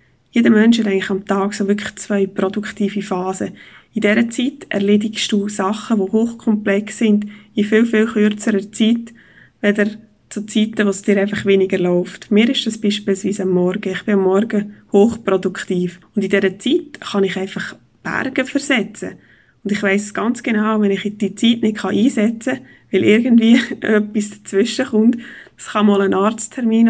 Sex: female